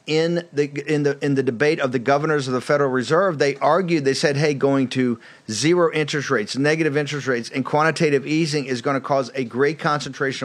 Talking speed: 215 wpm